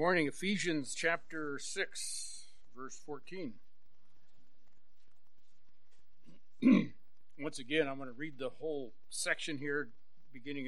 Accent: American